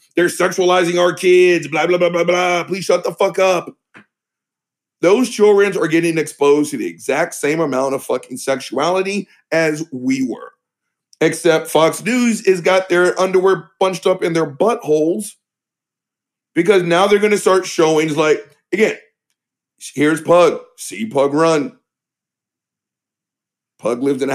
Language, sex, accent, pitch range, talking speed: English, male, American, 150-195 Hz, 150 wpm